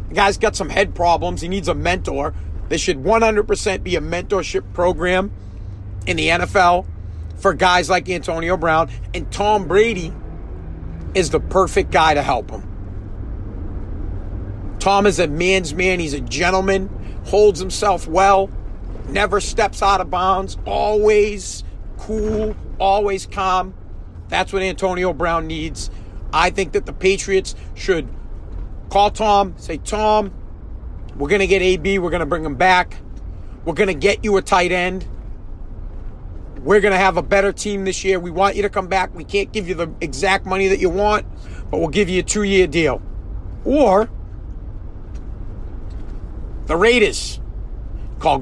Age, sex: 40-59, male